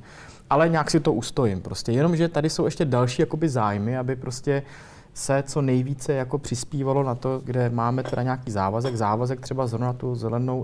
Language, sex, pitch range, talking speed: Czech, male, 110-135 Hz, 185 wpm